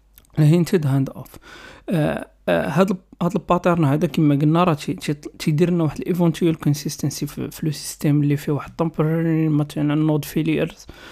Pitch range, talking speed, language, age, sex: 145-175 Hz, 140 wpm, Arabic, 40-59, male